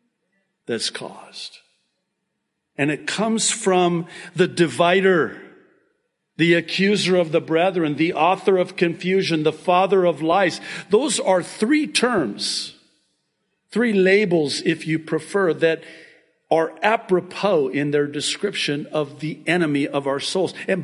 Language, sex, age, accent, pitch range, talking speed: English, male, 50-69, American, 165-230 Hz, 125 wpm